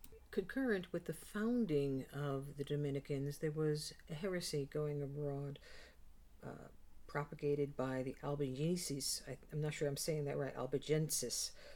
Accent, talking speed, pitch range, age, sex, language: American, 135 wpm, 140-170 Hz, 50-69, female, English